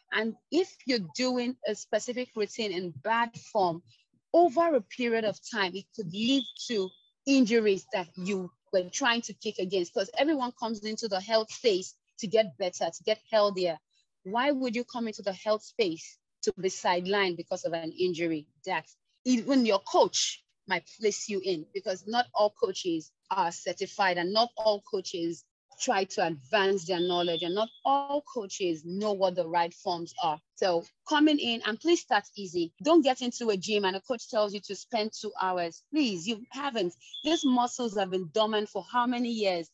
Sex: female